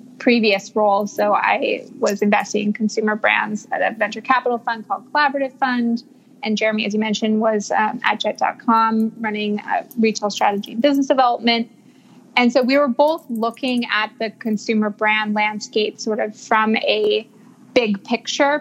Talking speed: 160 wpm